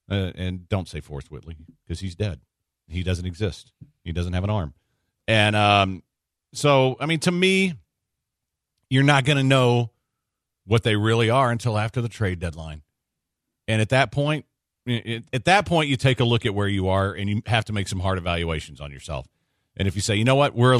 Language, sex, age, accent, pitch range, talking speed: English, male, 50-69, American, 95-130 Hz, 210 wpm